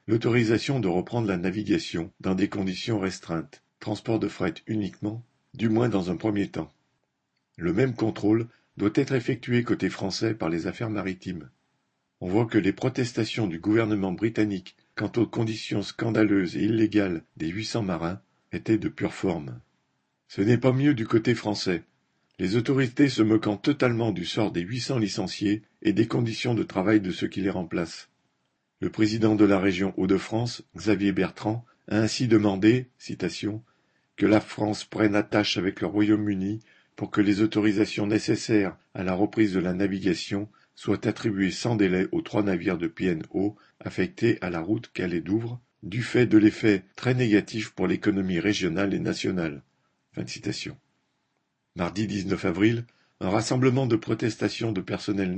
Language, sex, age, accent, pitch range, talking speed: French, male, 50-69, French, 100-115 Hz, 160 wpm